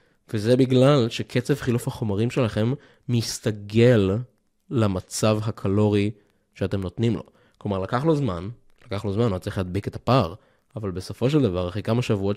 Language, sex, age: Hebrew, male, 20-39